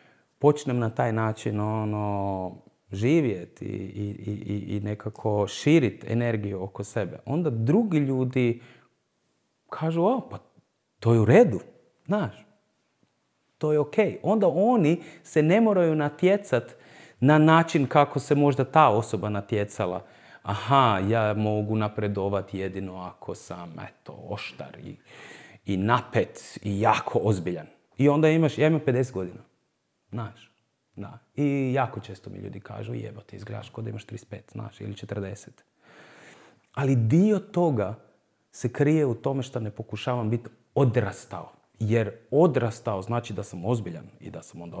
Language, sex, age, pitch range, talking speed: Croatian, male, 30-49, 105-145 Hz, 140 wpm